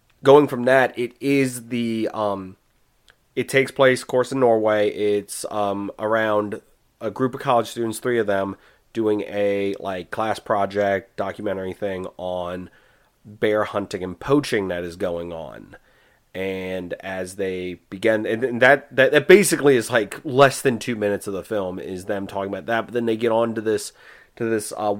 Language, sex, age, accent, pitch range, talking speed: English, male, 30-49, American, 100-135 Hz, 180 wpm